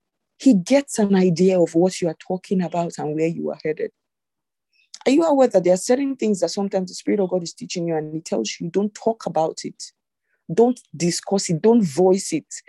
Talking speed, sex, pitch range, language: 220 wpm, female, 180-245 Hz, English